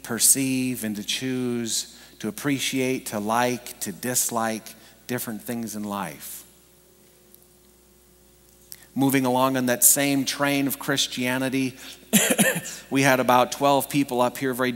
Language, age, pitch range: English, 40-59, 105-135 Hz